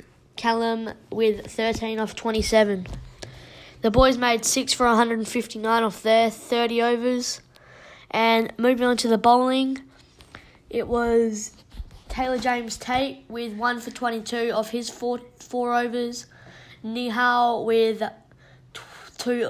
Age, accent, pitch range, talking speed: 20-39, Australian, 220-240 Hz, 115 wpm